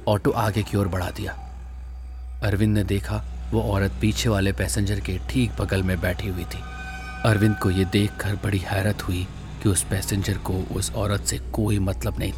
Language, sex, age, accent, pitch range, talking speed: Hindi, male, 30-49, native, 90-110 Hz, 185 wpm